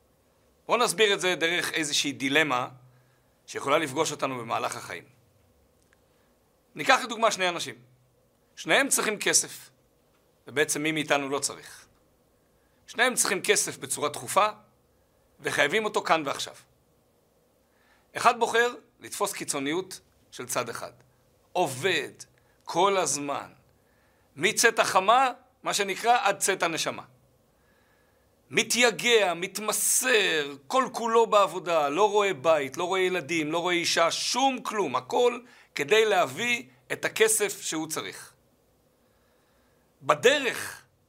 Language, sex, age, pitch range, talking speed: Hebrew, male, 50-69, 150-220 Hz, 110 wpm